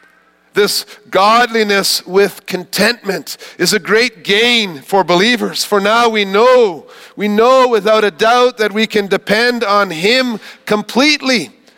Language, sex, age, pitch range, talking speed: English, male, 50-69, 175-225 Hz, 135 wpm